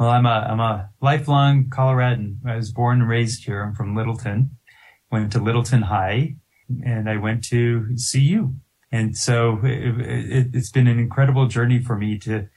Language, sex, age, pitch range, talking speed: English, male, 20-39, 110-125 Hz, 165 wpm